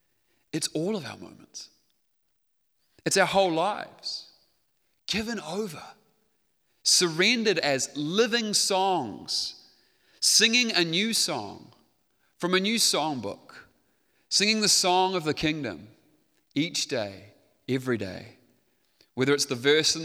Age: 30-49